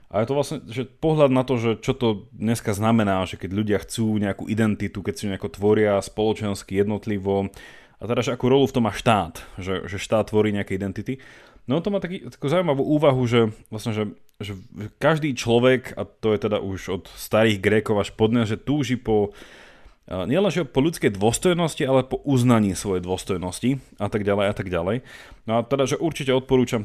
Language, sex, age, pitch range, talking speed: Slovak, male, 30-49, 105-130 Hz, 190 wpm